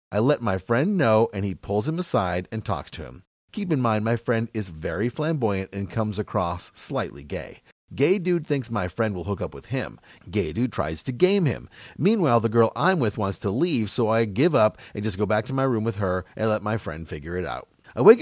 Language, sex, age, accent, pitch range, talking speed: English, male, 30-49, American, 95-135 Hz, 240 wpm